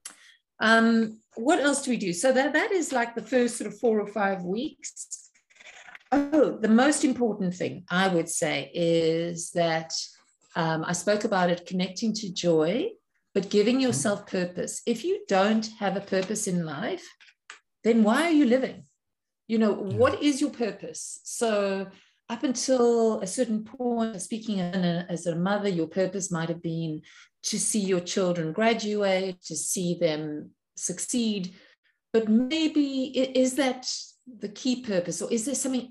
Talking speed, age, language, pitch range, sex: 160 wpm, 50-69, English, 175-235 Hz, female